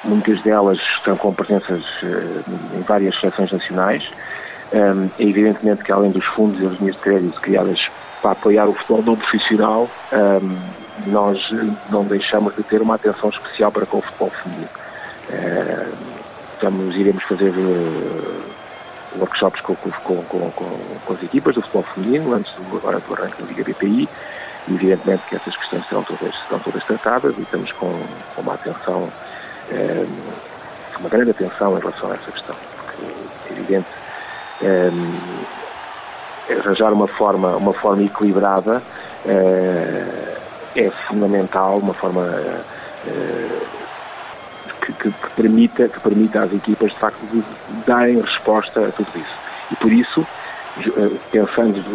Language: Portuguese